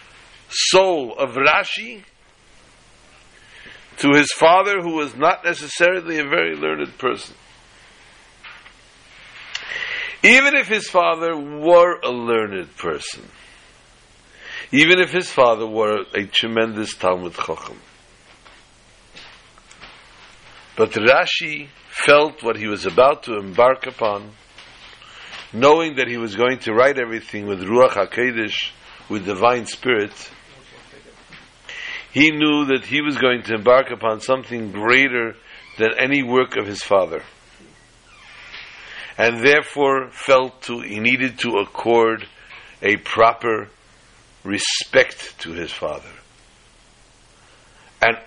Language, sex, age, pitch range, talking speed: English, male, 60-79, 115-150 Hz, 110 wpm